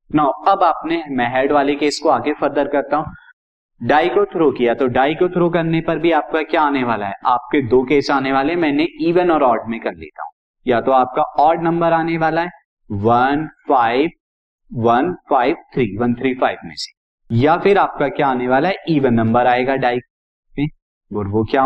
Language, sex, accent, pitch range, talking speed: Hindi, male, native, 125-165 Hz, 205 wpm